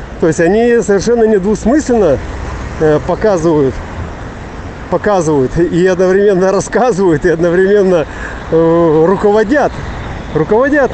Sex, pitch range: male, 150-190 Hz